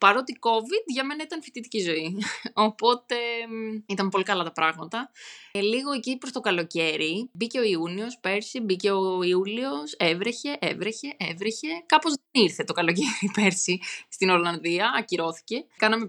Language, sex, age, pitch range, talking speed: Greek, female, 20-39, 180-235 Hz, 145 wpm